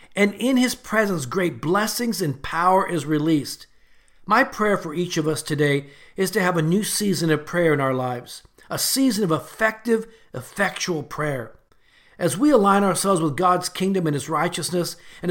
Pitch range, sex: 155-205 Hz, male